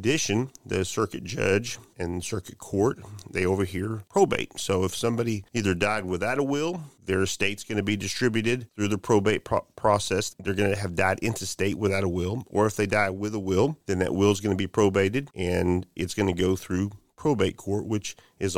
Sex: male